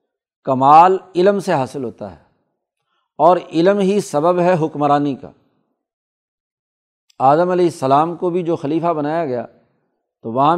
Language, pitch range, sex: Urdu, 140-175 Hz, male